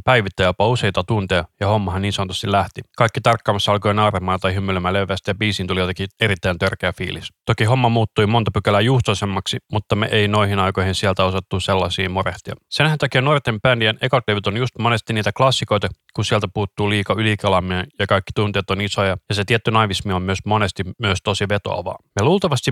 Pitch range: 95-115 Hz